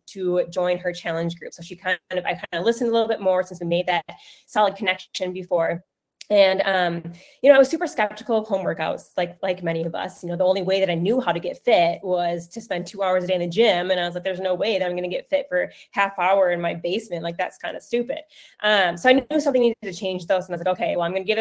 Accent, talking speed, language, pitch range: American, 290 wpm, English, 180-225 Hz